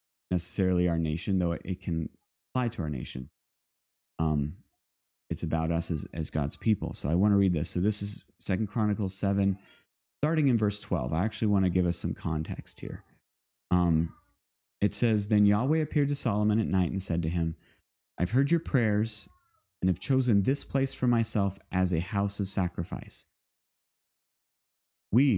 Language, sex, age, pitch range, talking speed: English, male, 30-49, 85-115 Hz, 175 wpm